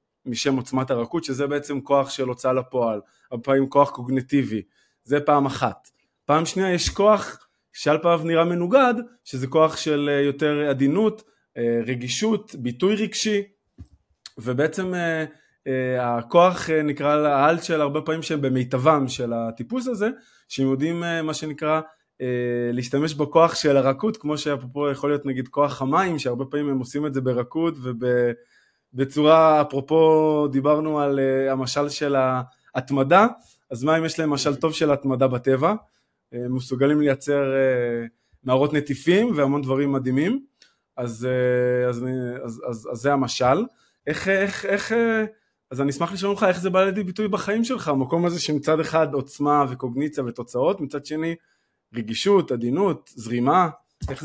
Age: 20-39